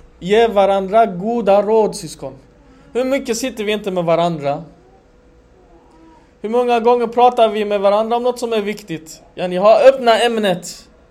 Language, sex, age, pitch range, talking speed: Swedish, male, 20-39, 160-230 Hz, 155 wpm